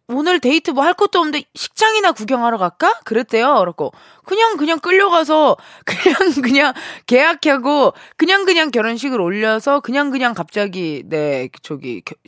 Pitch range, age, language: 190-300 Hz, 20-39, Korean